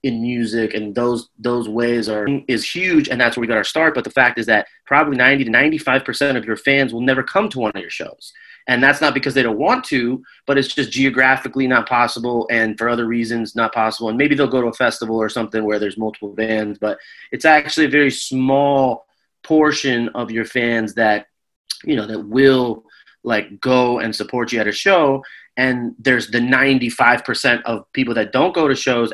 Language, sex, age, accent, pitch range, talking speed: English, male, 30-49, American, 115-135 Hz, 215 wpm